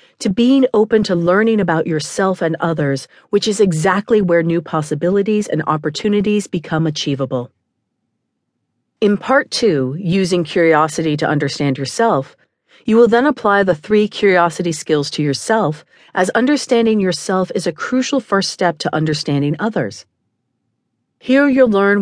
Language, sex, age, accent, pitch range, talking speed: English, female, 40-59, American, 150-205 Hz, 140 wpm